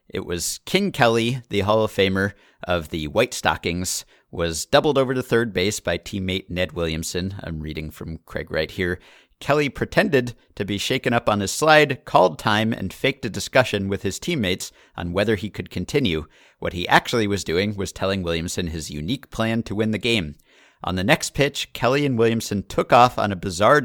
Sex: male